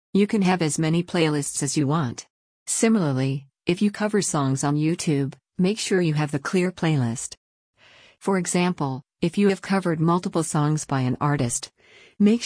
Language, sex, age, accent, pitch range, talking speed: English, female, 50-69, American, 135-175 Hz, 170 wpm